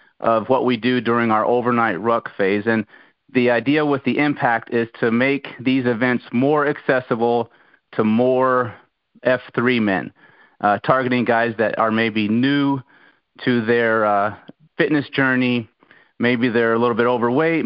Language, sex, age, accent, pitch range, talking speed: English, male, 30-49, American, 115-135 Hz, 150 wpm